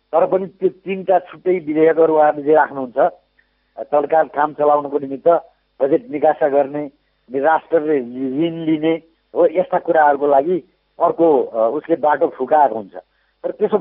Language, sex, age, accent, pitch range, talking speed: English, male, 60-79, Indian, 150-185 Hz, 100 wpm